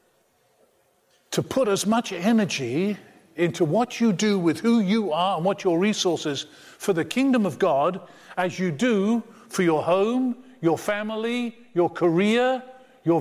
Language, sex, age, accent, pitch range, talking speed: English, male, 50-69, British, 175-230 Hz, 150 wpm